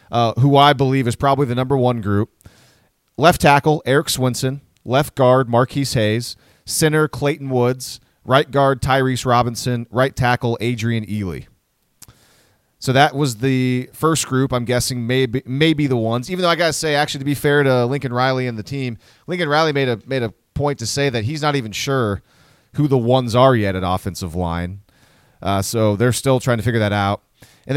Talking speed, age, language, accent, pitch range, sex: 190 wpm, 30-49, English, American, 110-140 Hz, male